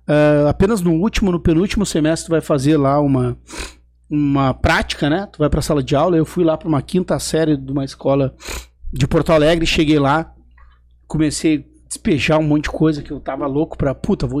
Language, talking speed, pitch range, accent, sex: Portuguese, 205 wpm, 140-170 Hz, Brazilian, male